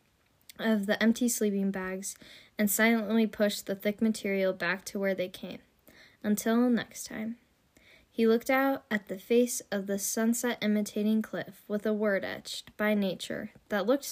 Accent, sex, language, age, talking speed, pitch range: American, female, English, 10-29, 160 wpm, 190-225 Hz